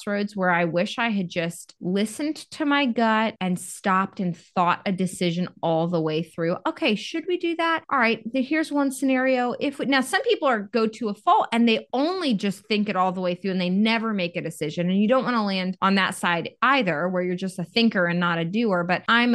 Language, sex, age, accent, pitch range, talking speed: English, female, 20-39, American, 175-225 Hz, 240 wpm